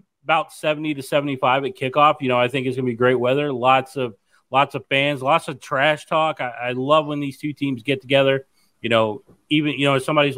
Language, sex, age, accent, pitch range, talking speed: English, male, 30-49, American, 125-145 Hz, 230 wpm